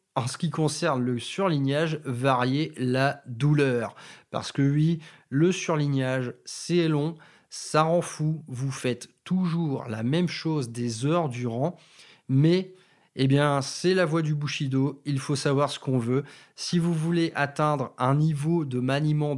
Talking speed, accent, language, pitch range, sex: 155 wpm, French, French, 135-165 Hz, male